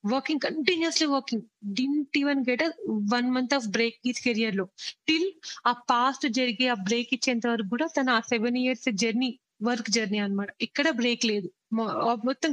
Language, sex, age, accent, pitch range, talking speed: Telugu, female, 20-39, native, 230-275 Hz, 160 wpm